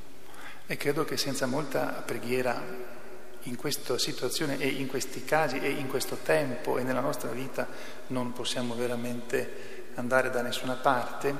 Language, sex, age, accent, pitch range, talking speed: Italian, male, 40-59, native, 125-145 Hz, 145 wpm